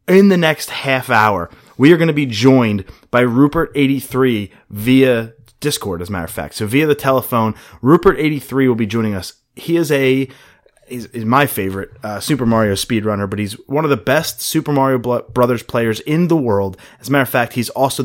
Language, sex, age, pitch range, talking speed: English, male, 30-49, 110-140 Hz, 195 wpm